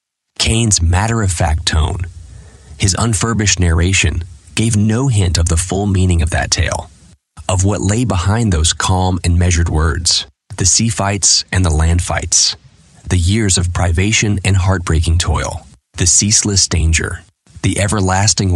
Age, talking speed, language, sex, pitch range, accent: 30-49, 150 wpm, English, male, 85-100 Hz, American